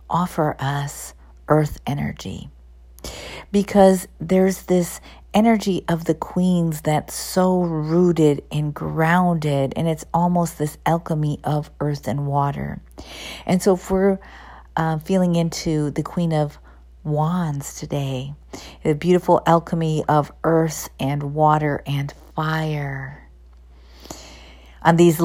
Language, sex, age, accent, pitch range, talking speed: English, female, 50-69, American, 140-170 Hz, 115 wpm